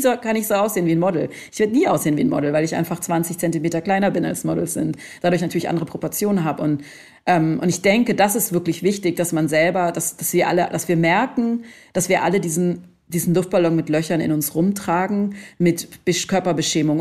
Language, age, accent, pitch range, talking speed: German, 40-59, German, 165-200 Hz, 215 wpm